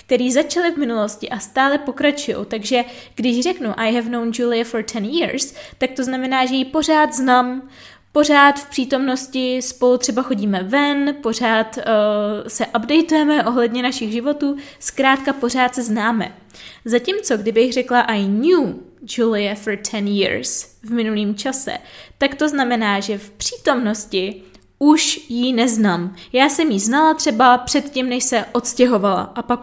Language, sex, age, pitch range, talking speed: Czech, female, 20-39, 215-265 Hz, 150 wpm